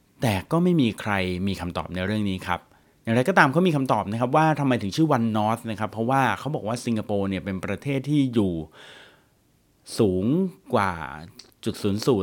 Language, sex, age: Thai, male, 30-49